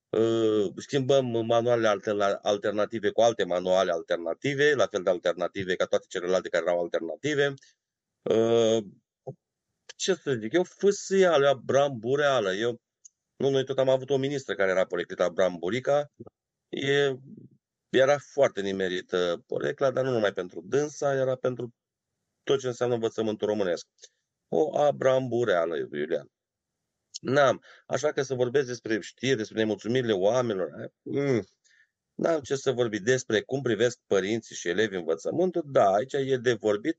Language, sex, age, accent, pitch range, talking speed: Romanian, male, 30-49, native, 110-145 Hz, 135 wpm